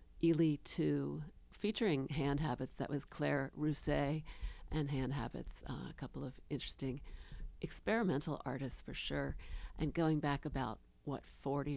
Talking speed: 140 wpm